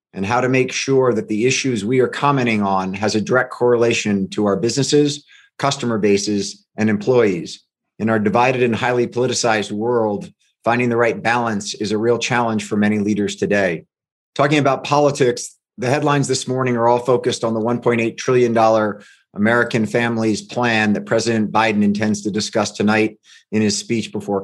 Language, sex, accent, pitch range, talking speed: English, male, American, 110-125 Hz, 170 wpm